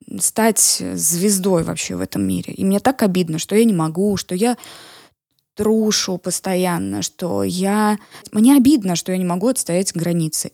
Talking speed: 160 wpm